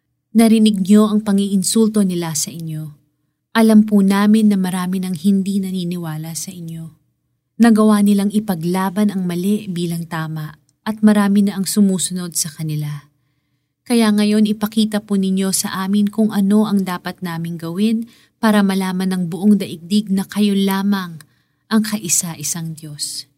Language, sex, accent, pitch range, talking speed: Filipino, female, native, 155-210 Hz, 140 wpm